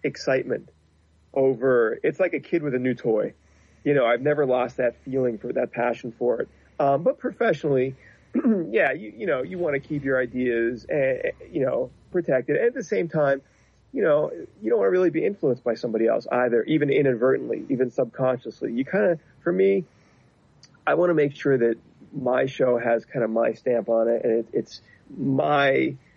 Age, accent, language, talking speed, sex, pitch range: 30-49, American, English, 195 wpm, male, 115-150 Hz